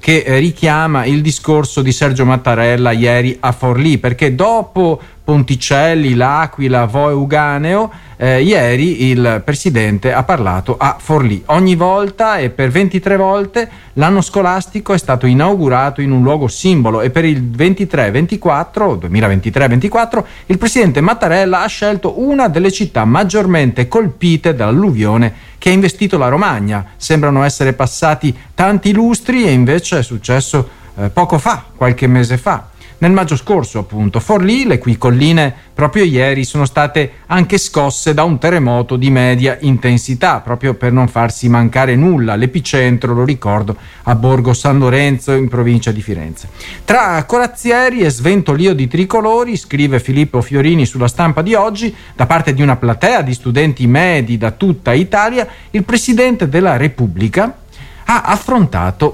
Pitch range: 125-180 Hz